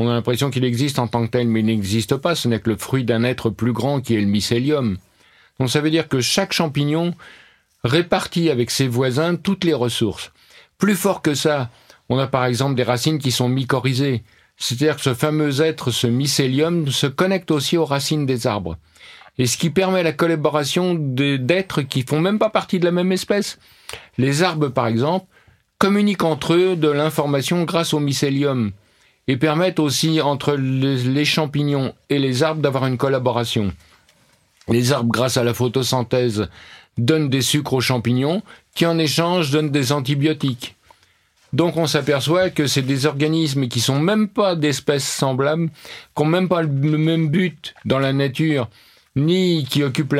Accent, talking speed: French, 180 wpm